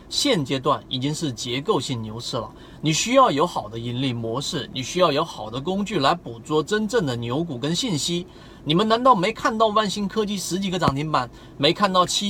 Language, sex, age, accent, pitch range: Chinese, male, 30-49, native, 125-180 Hz